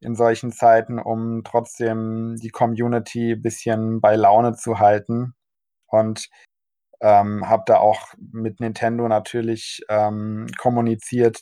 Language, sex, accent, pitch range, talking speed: German, male, German, 110-120 Hz, 120 wpm